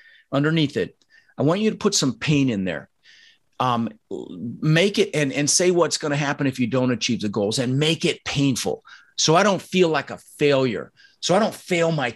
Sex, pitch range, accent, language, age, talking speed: male, 140-185 Hz, American, English, 40-59, 210 wpm